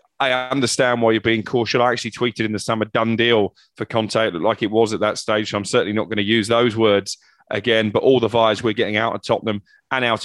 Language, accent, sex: English, British, male